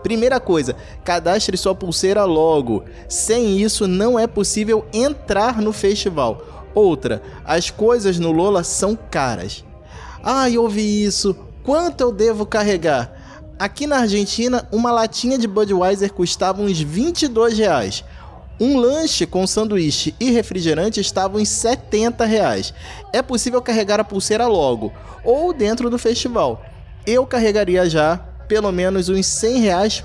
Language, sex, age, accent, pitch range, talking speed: Portuguese, male, 20-39, Brazilian, 175-230 Hz, 135 wpm